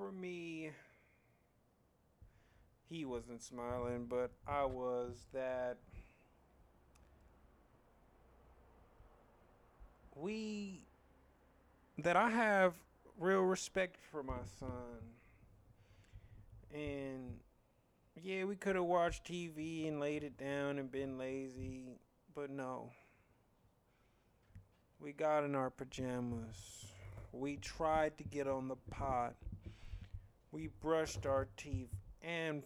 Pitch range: 100-150 Hz